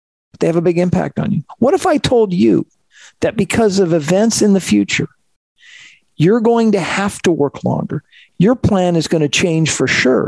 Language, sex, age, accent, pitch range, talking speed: English, male, 50-69, American, 140-195 Hz, 200 wpm